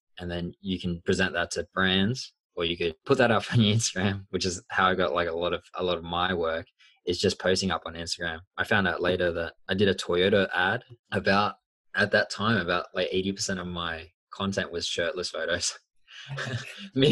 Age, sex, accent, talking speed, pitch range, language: 20-39, male, Australian, 215 wpm, 90-105 Hz, English